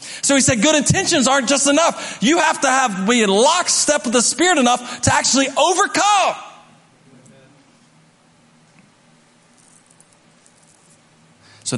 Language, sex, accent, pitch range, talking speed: English, male, American, 140-235 Hz, 110 wpm